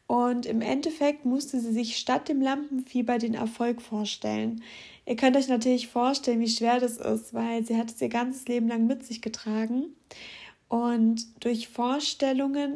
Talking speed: 165 wpm